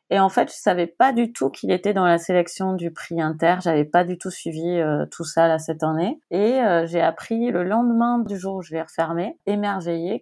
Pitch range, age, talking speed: 160-190 Hz, 30-49, 235 wpm